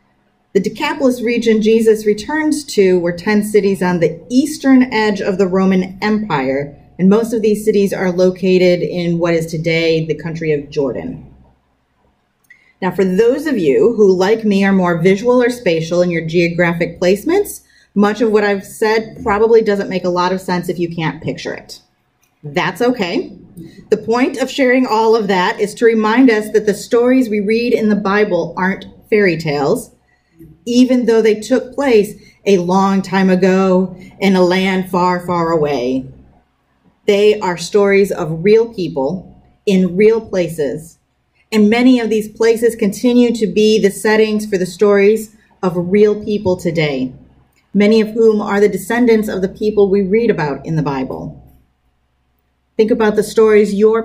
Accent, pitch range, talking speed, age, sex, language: American, 170-220 Hz, 170 wpm, 30-49, female, English